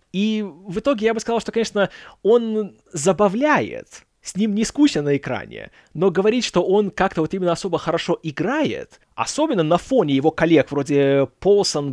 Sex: male